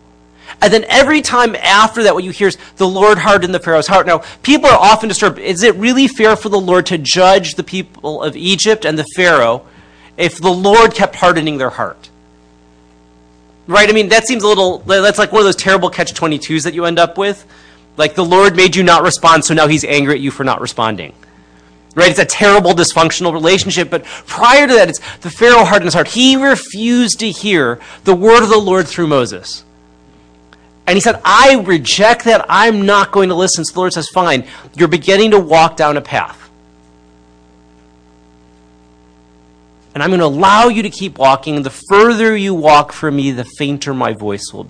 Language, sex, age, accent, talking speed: English, male, 30-49, American, 200 wpm